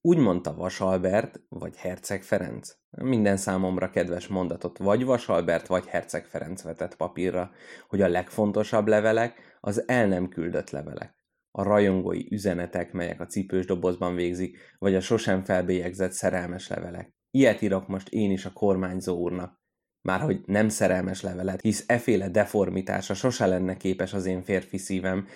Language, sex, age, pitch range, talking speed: Hungarian, male, 20-39, 90-105 Hz, 145 wpm